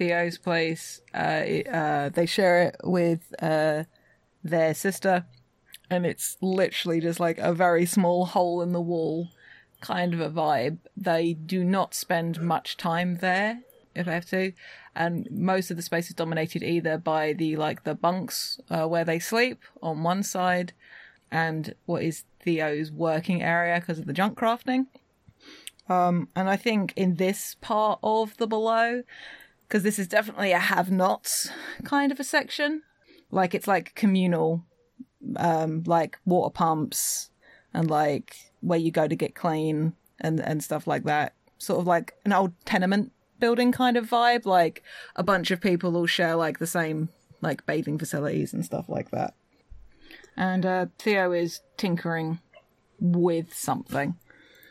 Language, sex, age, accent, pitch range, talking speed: English, female, 30-49, British, 165-195 Hz, 160 wpm